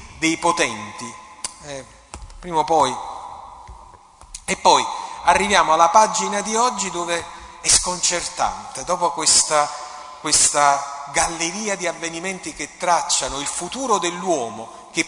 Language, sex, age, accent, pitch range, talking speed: Italian, male, 40-59, native, 160-195 Hz, 110 wpm